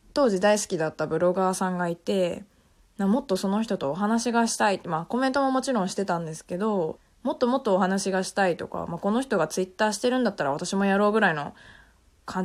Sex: female